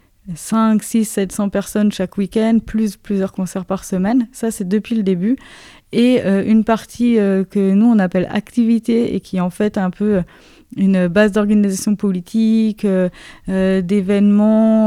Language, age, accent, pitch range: French, 20-39, French, 180-210 Hz